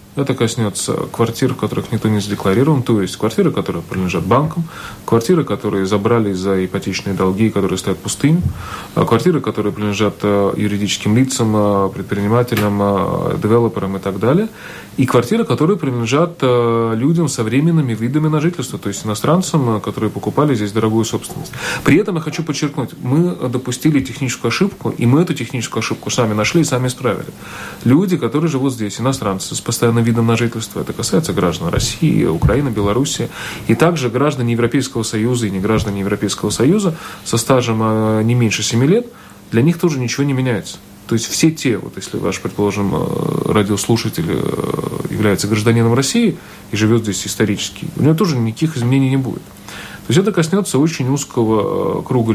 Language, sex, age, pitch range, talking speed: Russian, male, 30-49, 105-145 Hz, 160 wpm